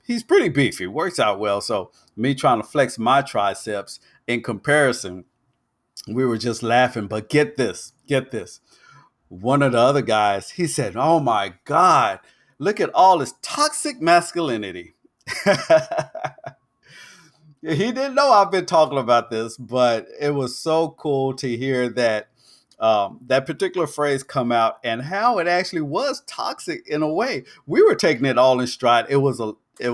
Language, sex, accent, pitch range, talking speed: English, male, American, 110-145 Hz, 165 wpm